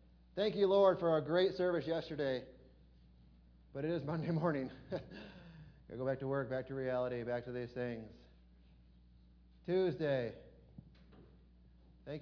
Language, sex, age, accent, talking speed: English, male, 30-49, American, 135 wpm